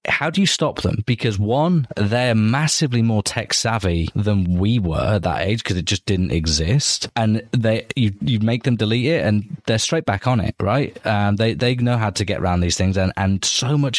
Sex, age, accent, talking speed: male, 20-39, British, 225 wpm